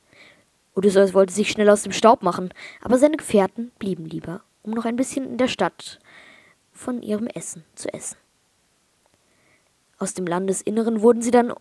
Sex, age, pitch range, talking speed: female, 20-39, 185-230 Hz, 160 wpm